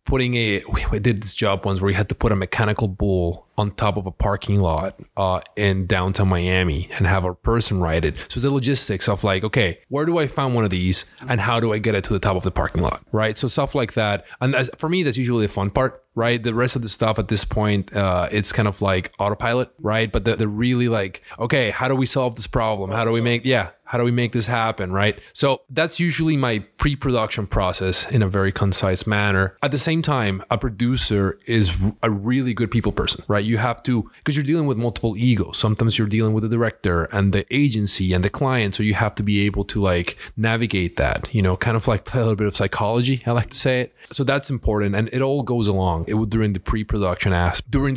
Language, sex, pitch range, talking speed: English, male, 100-125 Hz, 245 wpm